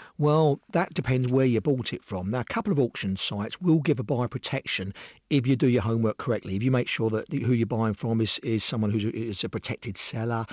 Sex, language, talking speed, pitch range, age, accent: male, English, 240 wpm, 115-150 Hz, 50-69, British